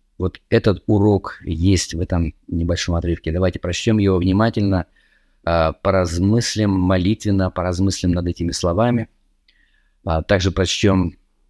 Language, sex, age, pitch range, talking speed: Russian, male, 20-39, 90-115 Hz, 105 wpm